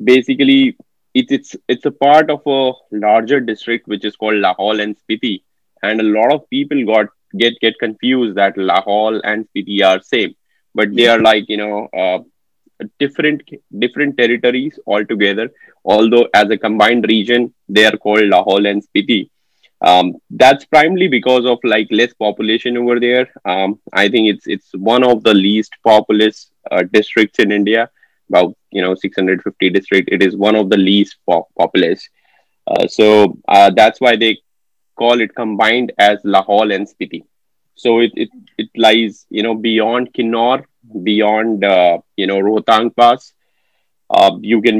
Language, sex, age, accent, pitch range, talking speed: English, male, 20-39, Indian, 105-125 Hz, 160 wpm